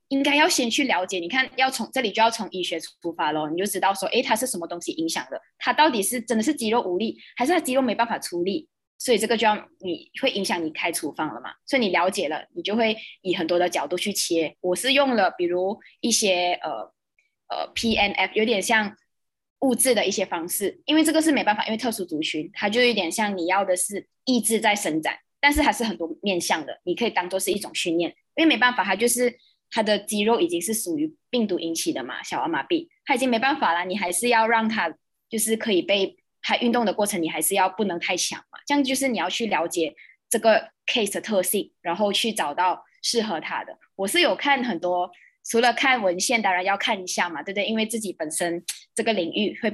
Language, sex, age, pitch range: Chinese, female, 20-39, 180-255 Hz